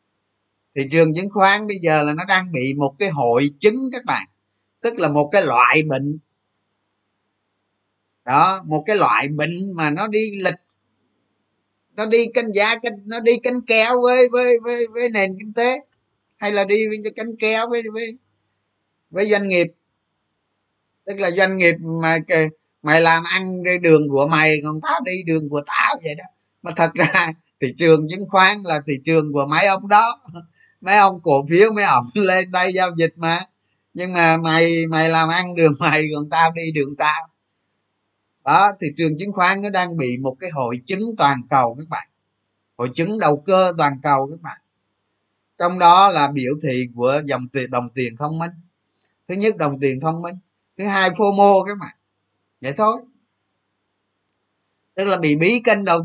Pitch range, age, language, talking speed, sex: 140-200 Hz, 20-39, Vietnamese, 180 wpm, male